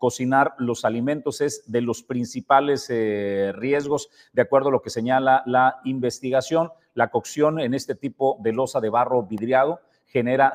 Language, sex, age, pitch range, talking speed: Spanish, male, 40-59, 125-170 Hz, 160 wpm